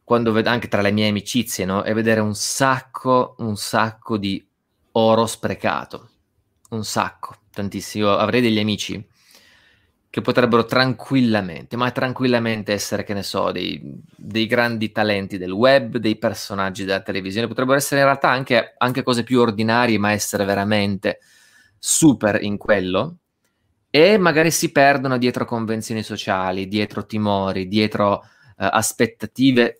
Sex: male